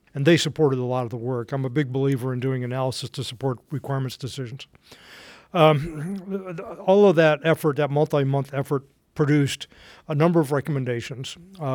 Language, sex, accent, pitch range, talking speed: English, male, American, 130-155 Hz, 165 wpm